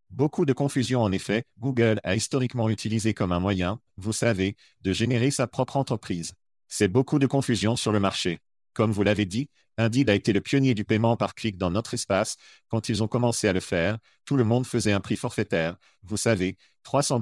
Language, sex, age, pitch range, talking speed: French, male, 50-69, 100-120 Hz, 205 wpm